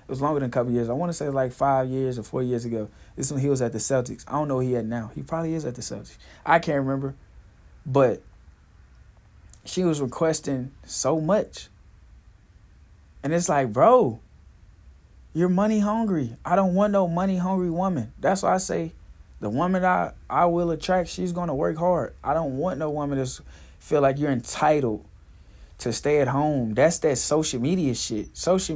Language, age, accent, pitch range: English, 20-39, American, 105-160 Hz